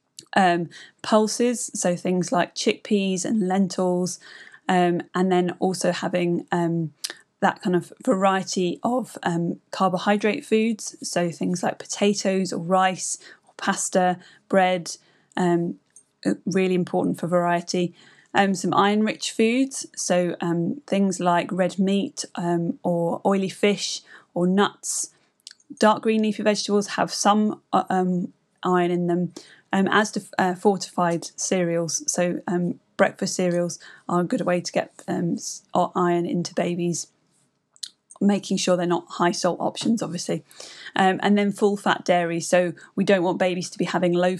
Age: 20-39